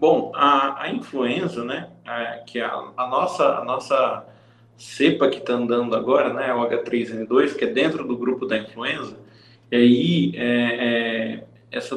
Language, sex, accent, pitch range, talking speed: Portuguese, male, Brazilian, 120-155 Hz, 165 wpm